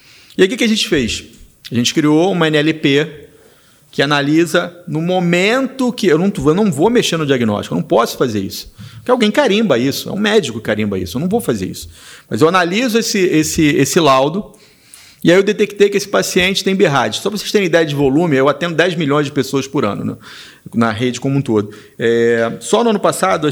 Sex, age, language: male, 40-59, Portuguese